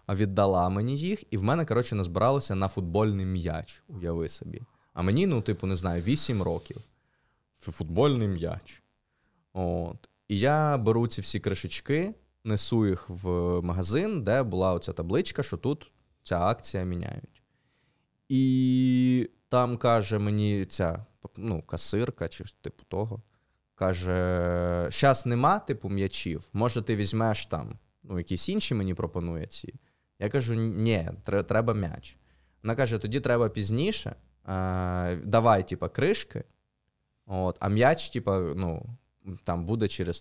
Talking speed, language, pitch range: 135 wpm, Ukrainian, 90-125 Hz